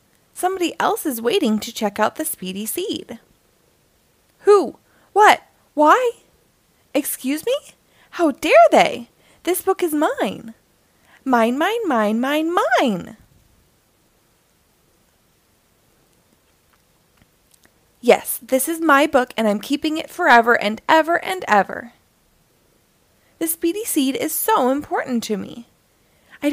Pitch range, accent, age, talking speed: 235-335 Hz, American, 20-39, 115 wpm